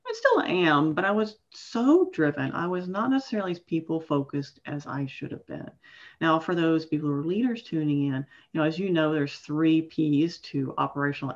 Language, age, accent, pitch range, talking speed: English, 40-59, American, 155-235 Hz, 200 wpm